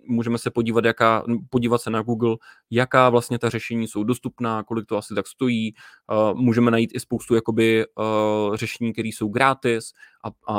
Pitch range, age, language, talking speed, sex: 115-130 Hz, 20-39, Czech, 175 wpm, male